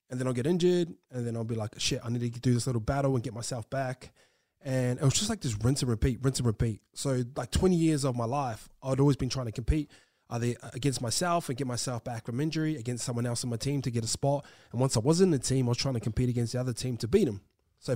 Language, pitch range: English, 115-140 Hz